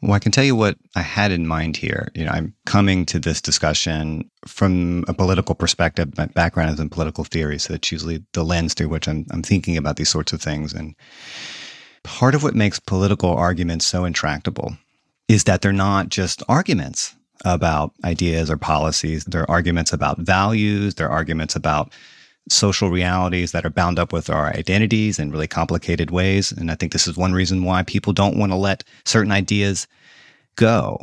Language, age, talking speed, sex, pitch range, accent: English, 30-49, 190 wpm, male, 80-100 Hz, American